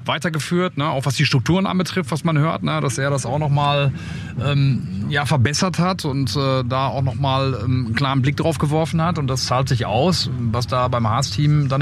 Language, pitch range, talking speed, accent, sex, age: German, 125-150 Hz, 215 wpm, German, male, 30-49